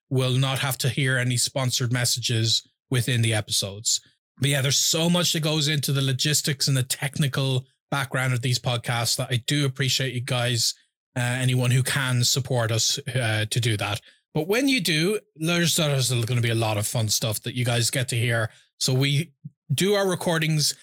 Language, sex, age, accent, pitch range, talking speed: English, male, 20-39, Irish, 125-150 Hz, 195 wpm